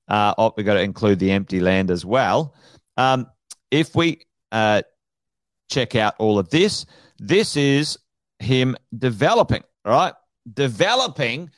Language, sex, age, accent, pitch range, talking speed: English, male, 40-59, Australian, 120-155 Hz, 135 wpm